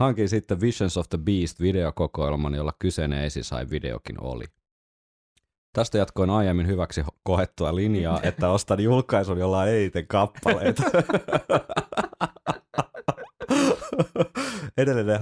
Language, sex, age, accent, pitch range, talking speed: Finnish, male, 30-49, native, 85-110 Hz, 95 wpm